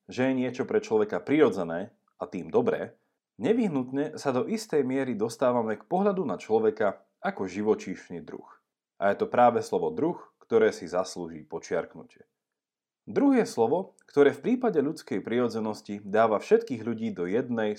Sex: male